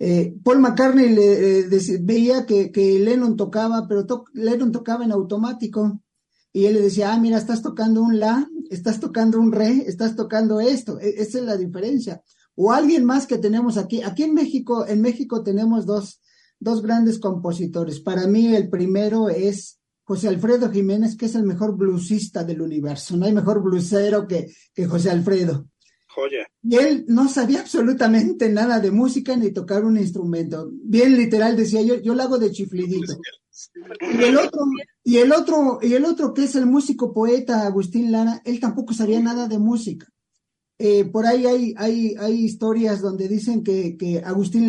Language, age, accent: English, 40-59, Mexican